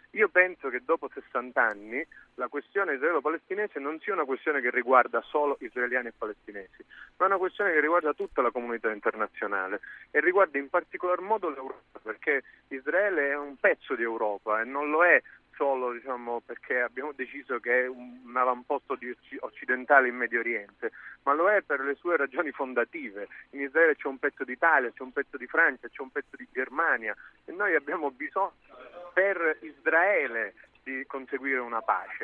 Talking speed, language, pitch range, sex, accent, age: 175 wpm, Italian, 125-180 Hz, male, native, 30-49